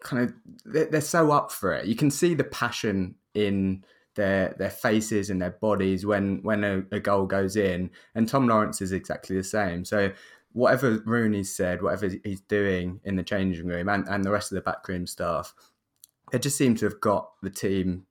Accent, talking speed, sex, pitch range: British, 200 wpm, male, 95-110 Hz